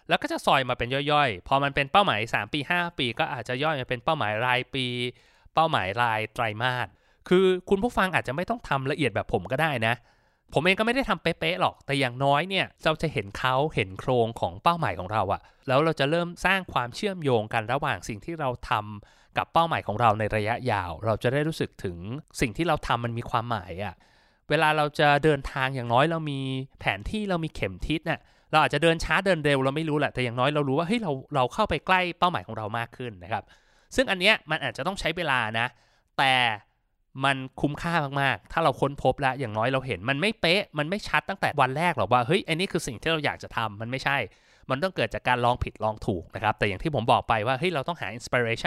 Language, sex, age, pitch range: Thai, male, 20-39, 120-160 Hz